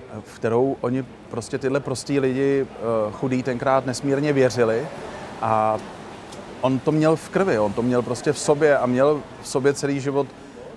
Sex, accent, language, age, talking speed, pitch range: male, native, Czech, 30-49, 160 wpm, 120-140 Hz